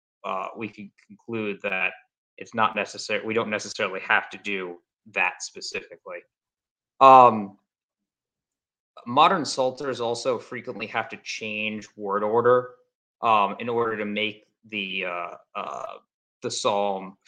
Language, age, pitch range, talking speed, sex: English, 20-39, 100-120 Hz, 125 wpm, male